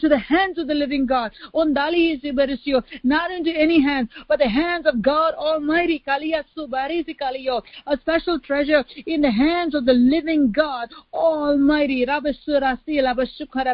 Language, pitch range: English, 255-300 Hz